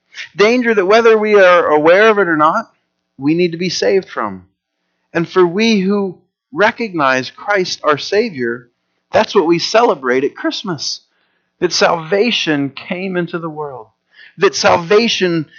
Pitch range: 150-210 Hz